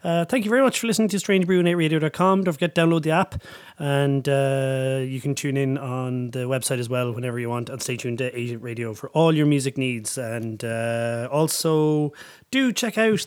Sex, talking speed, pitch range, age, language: male, 215 wpm, 120-155 Hz, 30-49, English